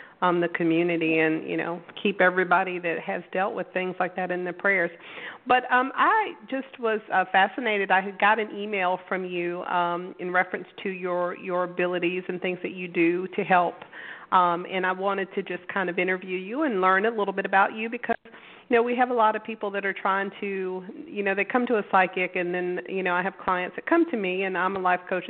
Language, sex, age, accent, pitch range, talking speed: English, female, 40-59, American, 180-215 Hz, 235 wpm